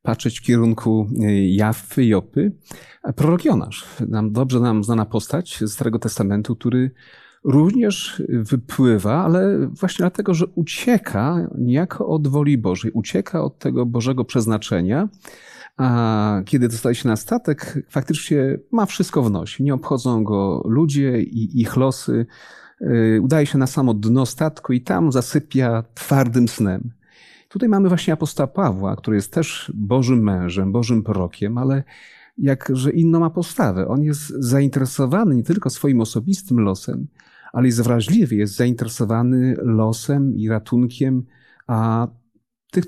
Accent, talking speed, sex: native, 130 wpm, male